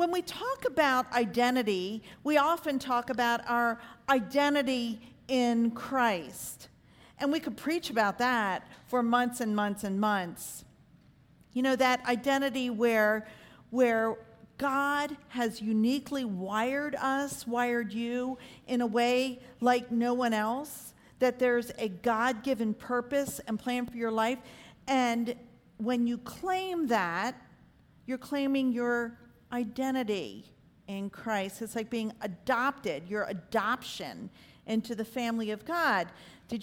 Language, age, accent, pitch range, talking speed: English, 50-69, American, 225-270 Hz, 130 wpm